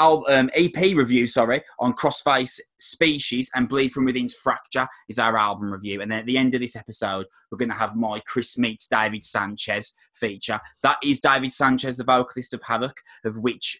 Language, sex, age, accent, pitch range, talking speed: English, male, 20-39, British, 115-145 Hz, 195 wpm